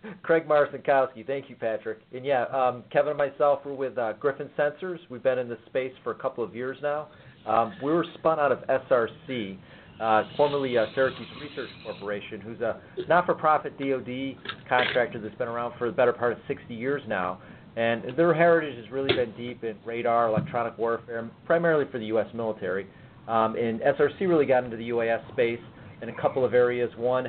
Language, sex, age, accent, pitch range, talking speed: English, male, 40-59, American, 115-135 Hz, 190 wpm